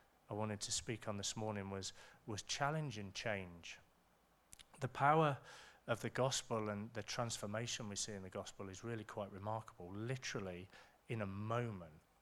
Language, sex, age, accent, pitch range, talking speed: English, male, 30-49, British, 100-120 Hz, 160 wpm